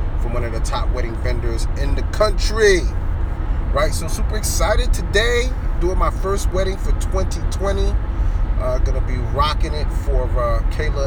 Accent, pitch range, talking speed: American, 65-90 Hz, 155 wpm